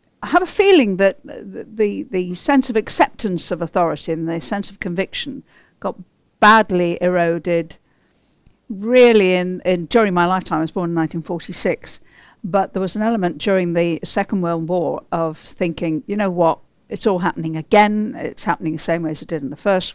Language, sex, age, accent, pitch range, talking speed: English, female, 50-69, British, 165-200 Hz, 185 wpm